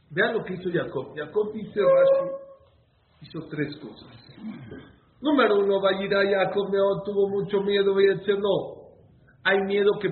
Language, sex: English, male